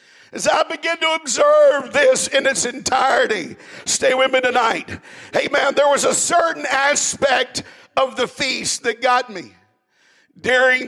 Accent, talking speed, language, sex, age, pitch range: American, 150 wpm, English, male, 50-69, 270-310 Hz